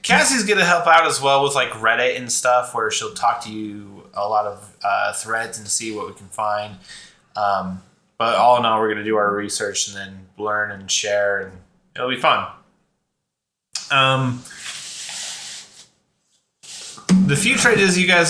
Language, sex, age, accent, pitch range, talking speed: English, male, 20-39, American, 105-140 Hz, 175 wpm